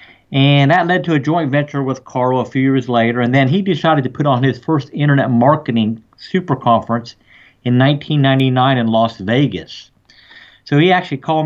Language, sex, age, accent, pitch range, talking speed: English, male, 50-69, American, 125-145 Hz, 185 wpm